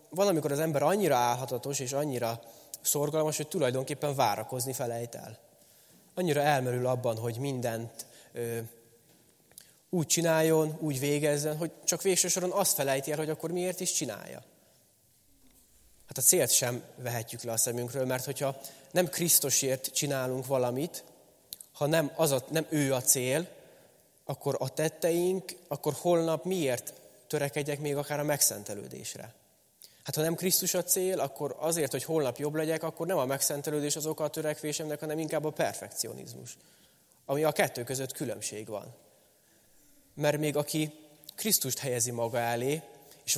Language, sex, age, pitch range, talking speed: Hungarian, male, 20-39, 125-160 Hz, 140 wpm